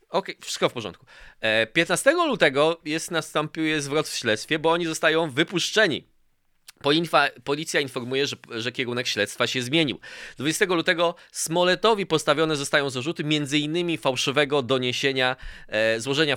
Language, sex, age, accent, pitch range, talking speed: Polish, male, 20-39, native, 125-165 Hz, 125 wpm